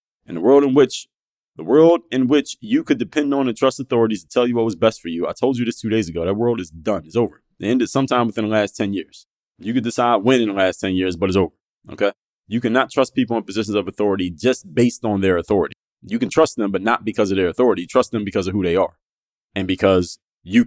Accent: American